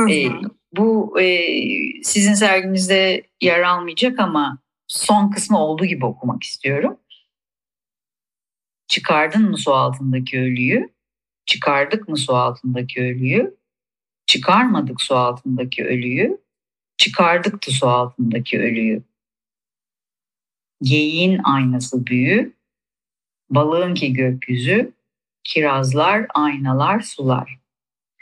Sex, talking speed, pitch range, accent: female, 85 wpm, 130-210 Hz, native